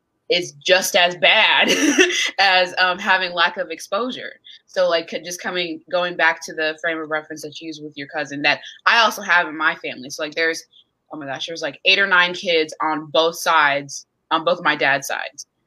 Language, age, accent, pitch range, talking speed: English, 20-39, American, 155-180 Hz, 205 wpm